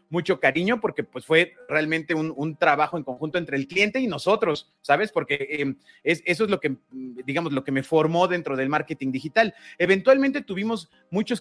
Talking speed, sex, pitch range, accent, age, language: 190 wpm, male, 140-190 Hz, Mexican, 30-49, Spanish